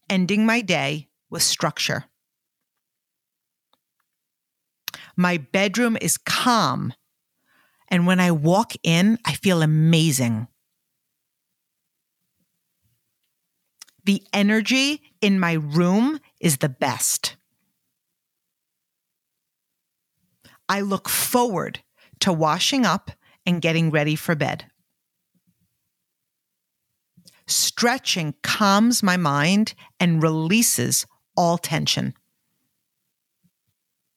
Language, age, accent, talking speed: English, 40-59, American, 75 wpm